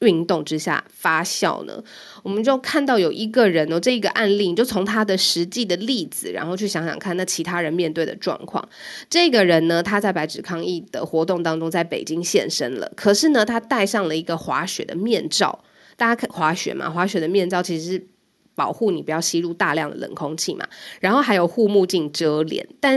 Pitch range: 170-230 Hz